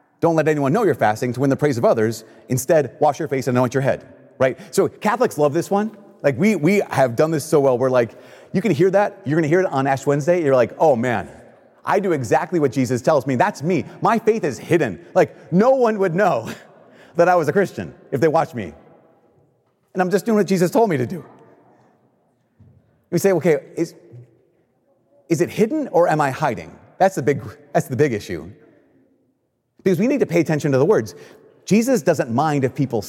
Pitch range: 130-175 Hz